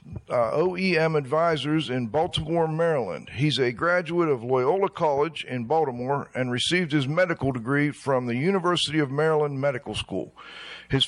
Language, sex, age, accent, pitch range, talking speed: English, male, 50-69, American, 130-170 Hz, 145 wpm